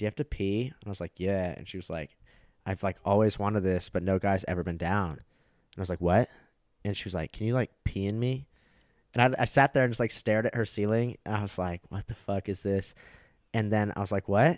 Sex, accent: male, American